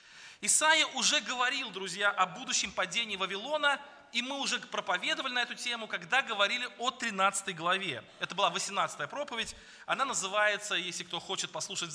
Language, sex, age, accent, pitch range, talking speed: Russian, male, 20-39, native, 195-255 Hz, 150 wpm